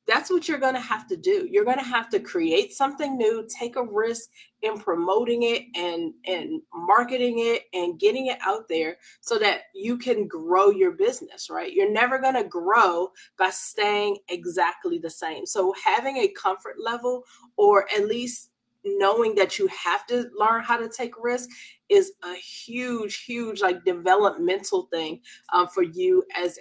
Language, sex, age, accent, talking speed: English, female, 20-39, American, 175 wpm